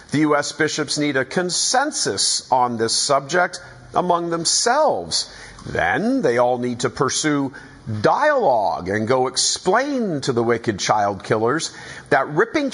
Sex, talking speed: male, 130 wpm